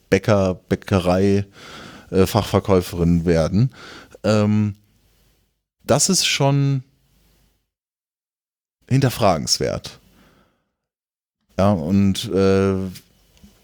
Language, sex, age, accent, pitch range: German, male, 30-49, German, 95-120 Hz